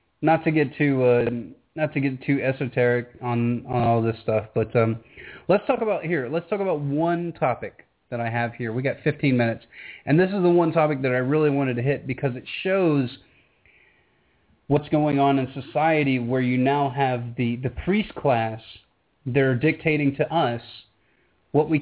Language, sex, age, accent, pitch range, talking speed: English, male, 30-49, American, 125-155 Hz, 190 wpm